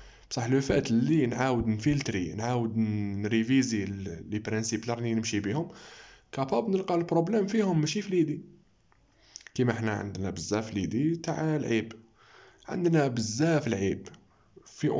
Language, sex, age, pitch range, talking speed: Arabic, male, 20-39, 110-135 Hz, 130 wpm